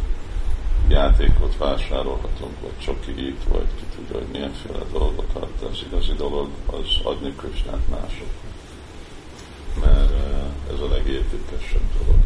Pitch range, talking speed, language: 70-80 Hz, 120 wpm, Hungarian